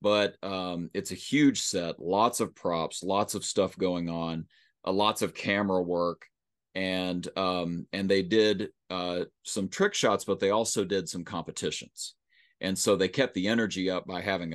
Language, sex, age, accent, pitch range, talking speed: English, male, 30-49, American, 85-95 Hz, 175 wpm